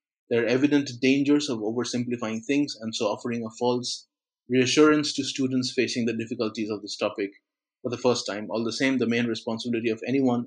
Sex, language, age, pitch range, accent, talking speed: male, English, 30-49, 115-140 Hz, Indian, 190 wpm